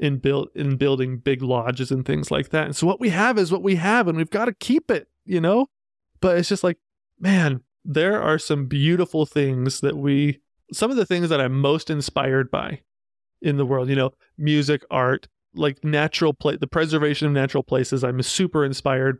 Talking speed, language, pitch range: 205 wpm, English, 135-160 Hz